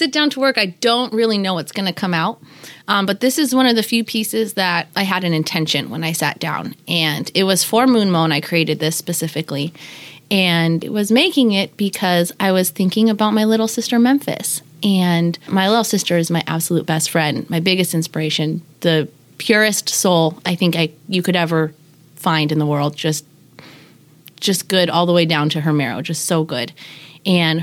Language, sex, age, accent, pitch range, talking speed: English, female, 20-39, American, 160-190 Hz, 205 wpm